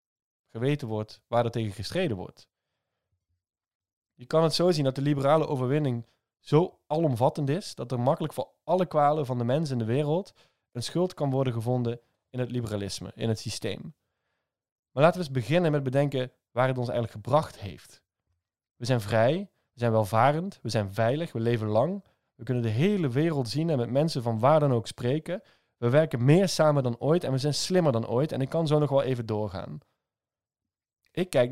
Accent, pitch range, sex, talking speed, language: Dutch, 115-150 Hz, male, 195 wpm, Dutch